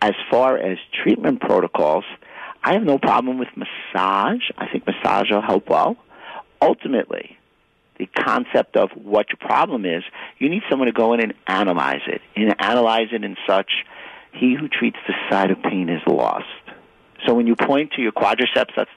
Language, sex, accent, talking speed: English, male, American, 175 wpm